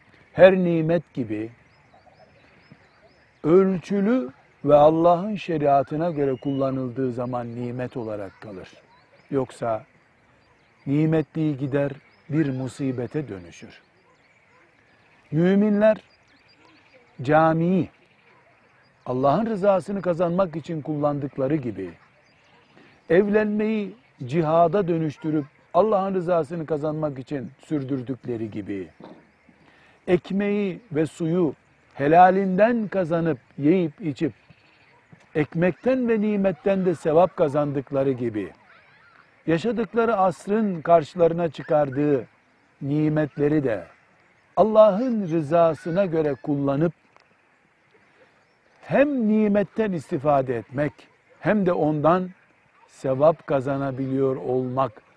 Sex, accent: male, native